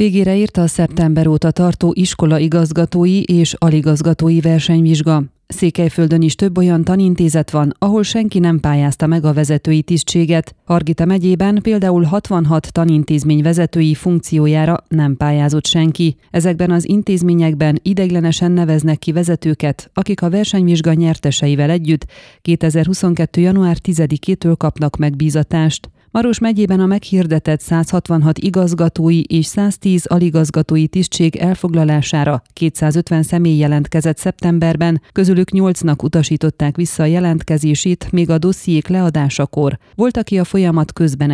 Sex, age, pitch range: female, 30-49, 155-180 Hz